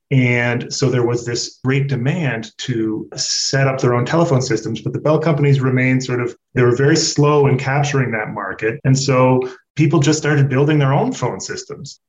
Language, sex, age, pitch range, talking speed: English, male, 30-49, 120-145 Hz, 195 wpm